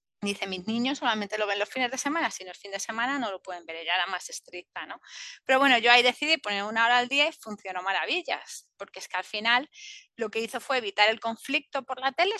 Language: Spanish